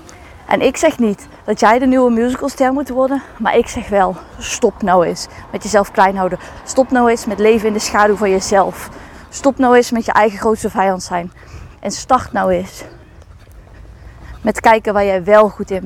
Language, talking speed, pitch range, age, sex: Dutch, 195 wpm, 200-245 Hz, 20-39, female